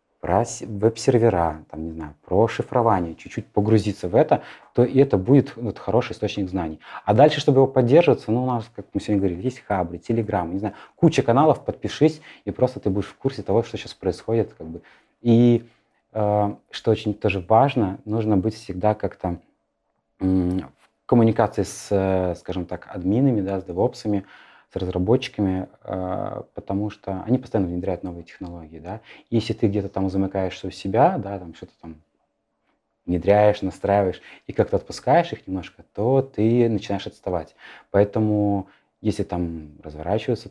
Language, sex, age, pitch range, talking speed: Russian, male, 30-49, 90-115 Hz, 160 wpm